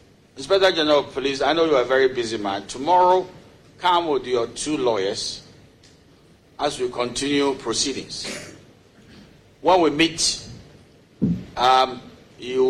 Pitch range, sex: 115-155 Hz, male